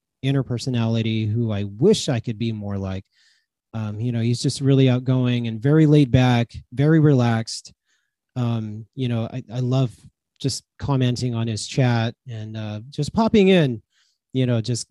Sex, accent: male, American